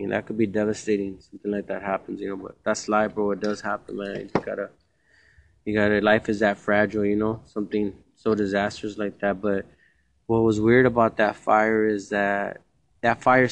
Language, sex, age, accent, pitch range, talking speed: English, male, 20-39, American, 100-110 Hz, 205 wpm